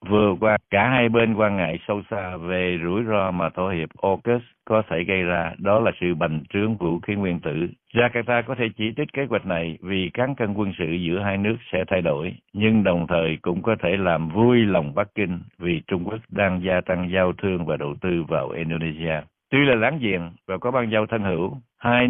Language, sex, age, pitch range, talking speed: Vietnamese, male, 60-79, 90-110 Hz, 225 wpm